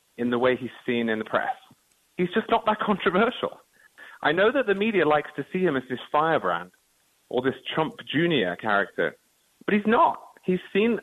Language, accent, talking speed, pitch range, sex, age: English, British, 190 wpm, 110-150 Hz, male, 30-49